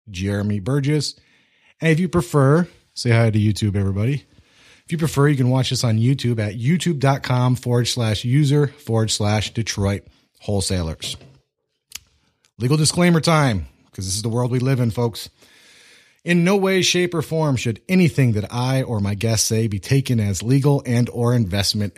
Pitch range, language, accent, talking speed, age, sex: 100-140 Hz, English, American, 170 wpm, 30-49, male